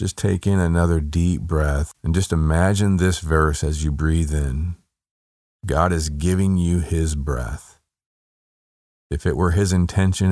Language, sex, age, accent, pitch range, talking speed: English, male, 50-69, American, 75-90 Hz, 150 wpm